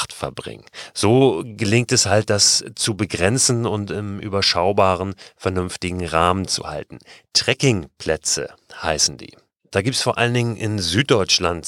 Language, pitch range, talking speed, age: German, 90-110 Hz, 135 wpm, 40-59